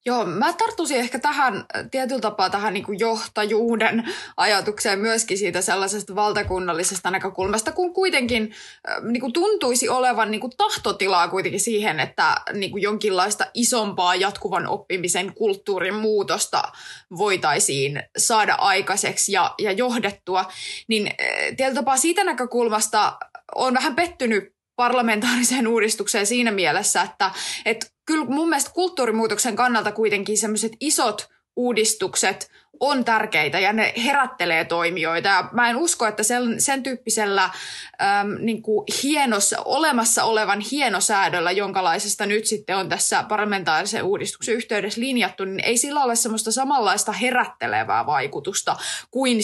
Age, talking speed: 20-39, 125 wpm